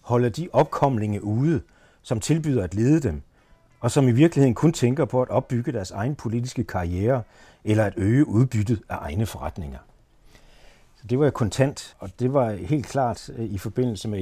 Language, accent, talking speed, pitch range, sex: Danish, native, 175 wpm, 95-125 Hz, male